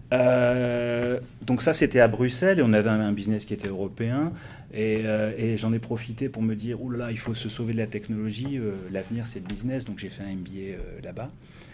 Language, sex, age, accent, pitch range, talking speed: English, male, 30-49, French, 105-120 Hz, 240 wpm